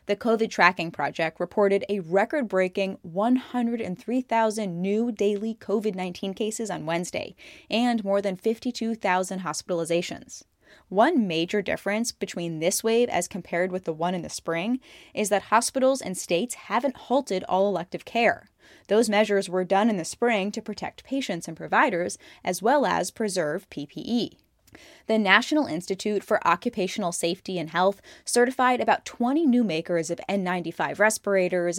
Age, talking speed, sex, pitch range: 10-29, 145 wpm, female, 180-225 Hz